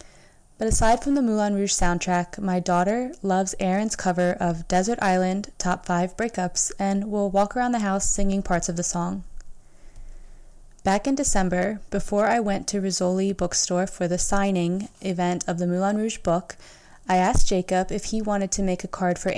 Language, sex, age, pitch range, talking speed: English, female, 20-39, 180-205 Hz, 180 wpm